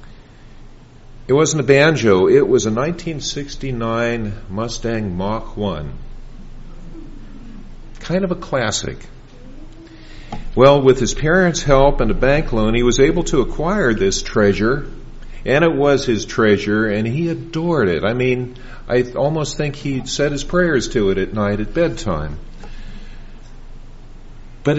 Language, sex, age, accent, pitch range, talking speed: English, male, 50-69, American, 115-165 Hz, 140 wpm